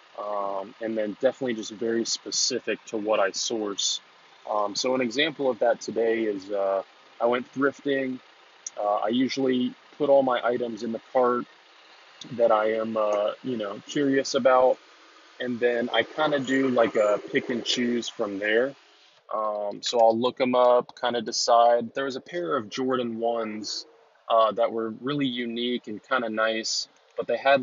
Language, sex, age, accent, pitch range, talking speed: English, male, 20-39, American, 110-125 Hz, 180 wpm